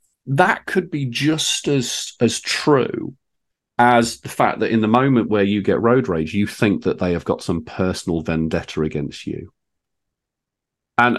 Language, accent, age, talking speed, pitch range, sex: English, British, 40-59, 165 wpm, 80-120 Hz, male